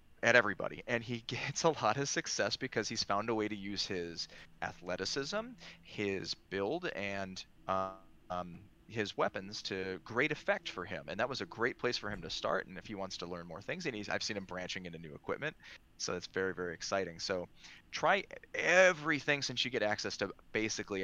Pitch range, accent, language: 90-110 Hz, American, English